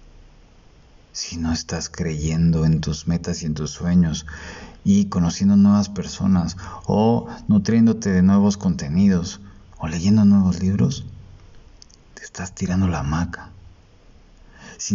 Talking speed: 120 wpm